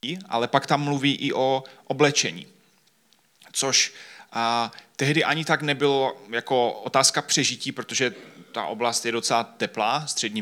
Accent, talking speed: native, 130 wpm